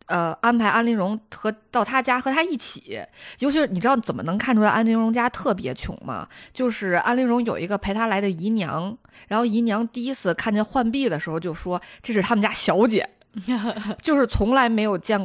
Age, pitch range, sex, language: 20-39, 195-245 Hz, female, Chinese